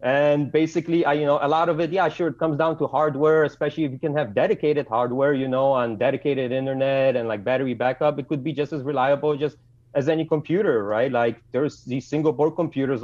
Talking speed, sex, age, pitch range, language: 225 wpm, male, 30-49, 125-155 Hz, English